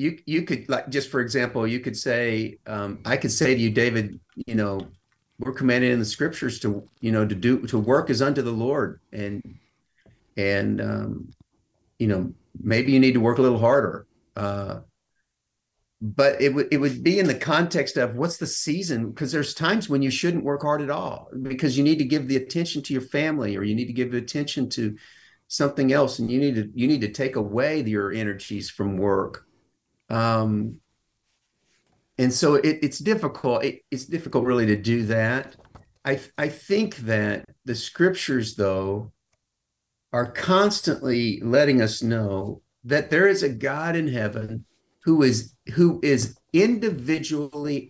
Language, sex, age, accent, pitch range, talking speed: English, male, 50-69, American, 110-145 Hz, 180 wpm